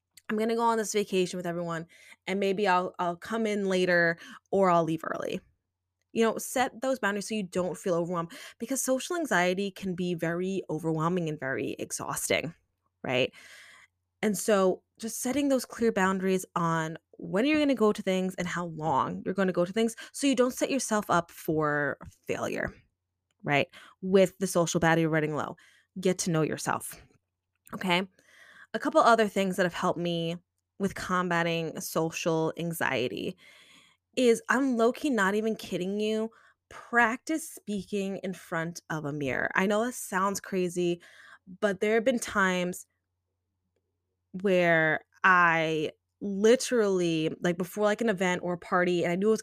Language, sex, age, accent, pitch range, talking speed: English, female, 20-39, American, 165-215 Hz, 165 wpm